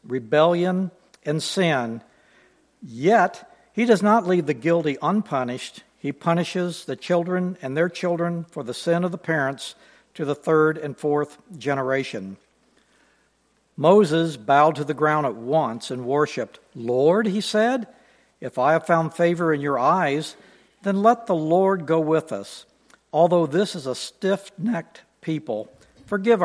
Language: English